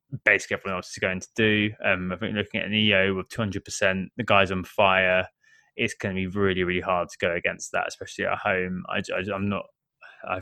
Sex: male